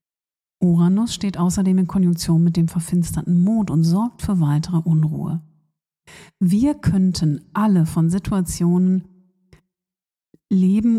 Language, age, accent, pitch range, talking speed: German, 50-69, German, 165-195 Hz, 110 wpm